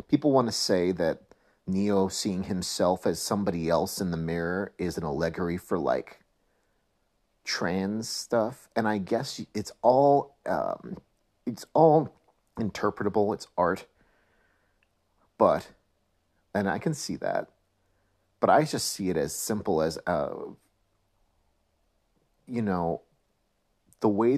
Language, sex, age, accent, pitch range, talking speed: English, male, 40-59, American, 85-105 Hz, 125 wpm